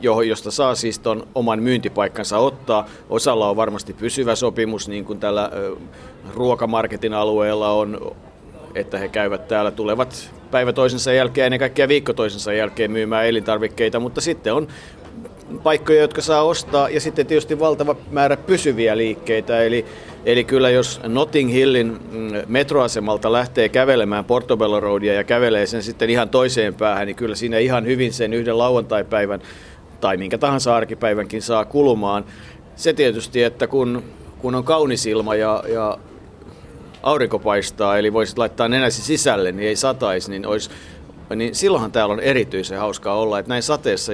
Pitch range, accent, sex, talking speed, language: 105-125 Hz, native, male, 145 wpm, Finnish